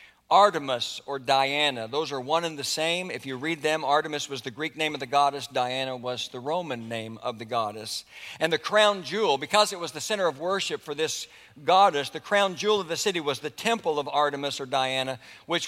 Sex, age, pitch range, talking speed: male, 60-79, 130-165 Hz, 220 wpm